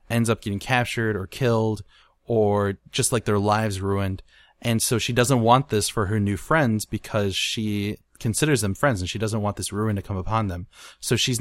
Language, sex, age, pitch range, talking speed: English, male, 20-39, 100-120 Hz, 205 wpm